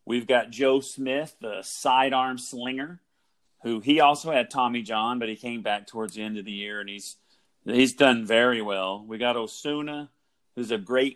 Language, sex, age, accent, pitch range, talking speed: English, male, 40-59, American, 110-135 Hz, 190 wpm